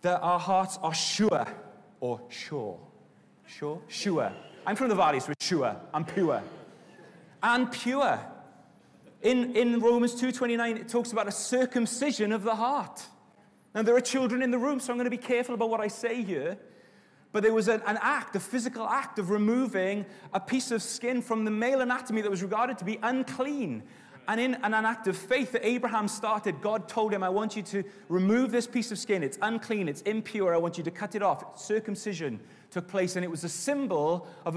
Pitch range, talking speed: 170-235 Hz, 200 wpm